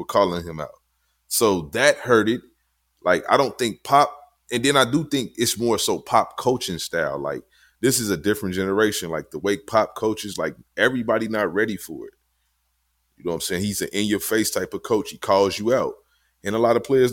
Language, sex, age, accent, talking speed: English, male, 30-49, American, 210 wpm